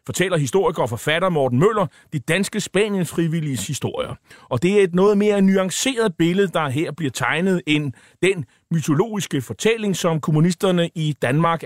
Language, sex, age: Danish, male, 30-49